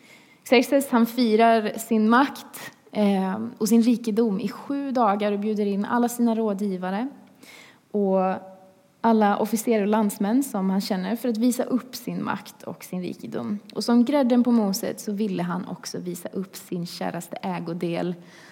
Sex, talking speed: female, 155 wpm